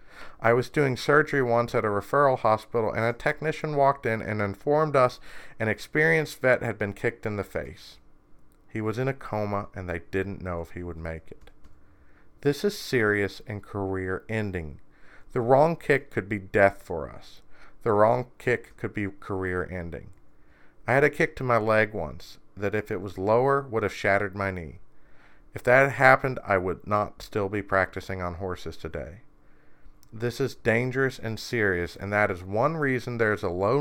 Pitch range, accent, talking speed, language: 95-125 Hz, American, 190 wpm, English